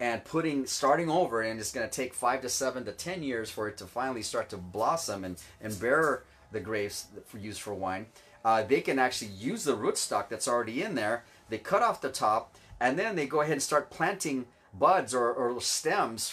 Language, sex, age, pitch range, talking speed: English, male, 30-49, 105-130 Hz, 215 wpm